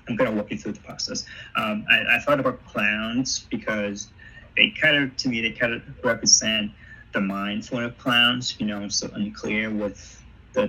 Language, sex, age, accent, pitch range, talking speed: English, male, 30-49, American, 100-110 Hz, 190 wpm